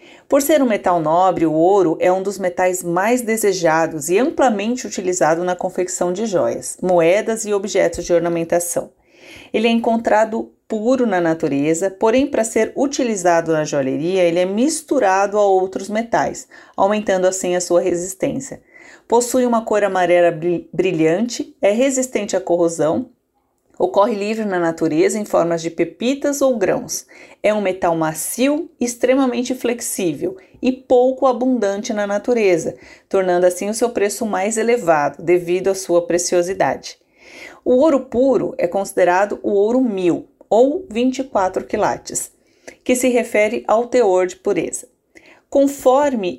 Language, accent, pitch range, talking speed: Portuguese, Brazilian, 180-245 Hz, 140 wpm